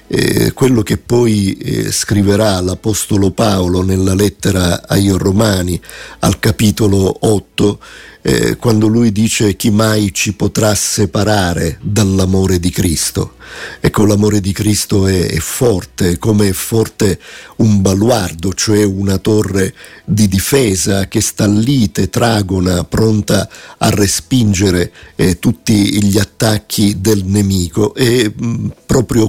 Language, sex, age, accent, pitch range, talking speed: Italian, male, 50-69, native, 95-110 Hz, 120 wpm